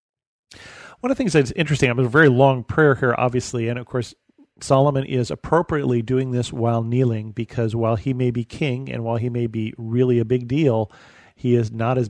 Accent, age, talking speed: American, 40-59, 205 wpm